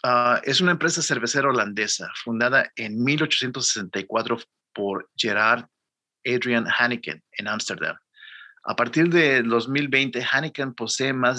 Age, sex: 50-69, male